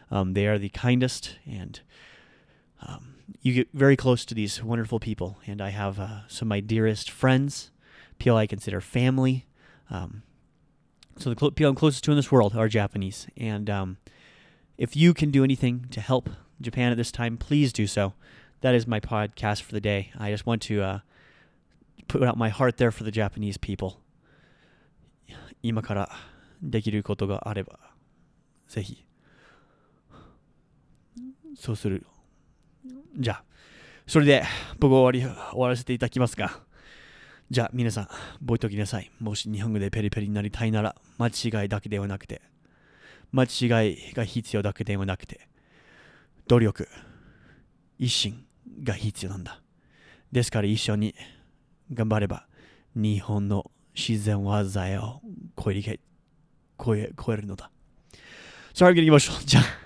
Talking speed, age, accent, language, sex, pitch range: 80 wpm, 30-49, American, English, male, 105-125 Hz